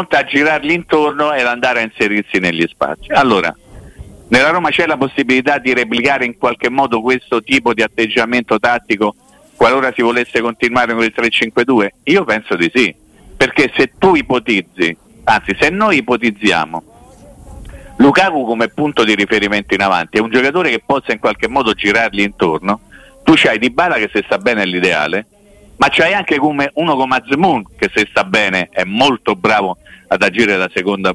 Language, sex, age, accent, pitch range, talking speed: Italian, male, 50-69, native, 100-145 Hz, 170 wpm